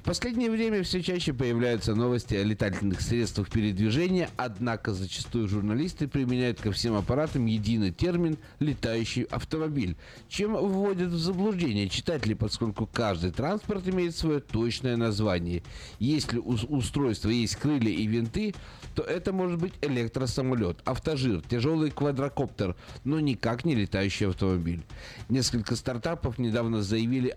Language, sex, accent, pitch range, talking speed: Russian, male, native, 105-145 Hz, 125 wpm